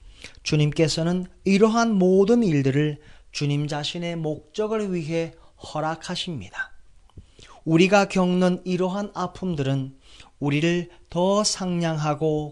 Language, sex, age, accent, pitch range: Korean, male, 40-59, native, 130-190 Hz